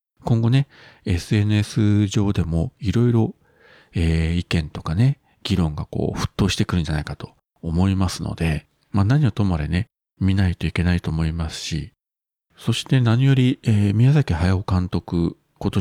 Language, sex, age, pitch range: Japanese, male, 40-59, 85-115 Hz